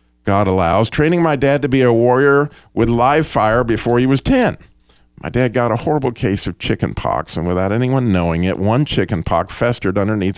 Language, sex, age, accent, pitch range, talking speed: English, male, 50-69, American, 90-130 Hz, 200 wpm